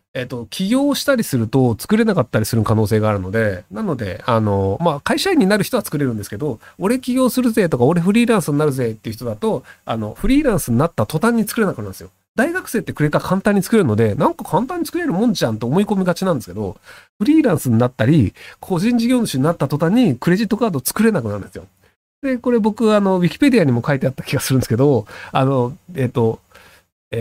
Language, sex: Japanese, male